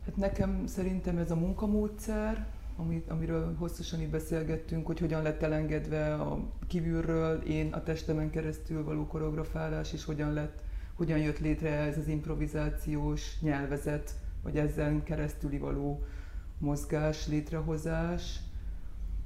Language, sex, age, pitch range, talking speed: Hungarian, female, 30-49, 145-160 Hz, 120 wpm